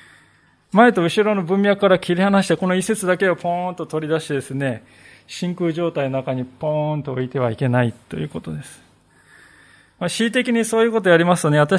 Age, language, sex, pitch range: 20-39, Japanese, male, 130-190 Hz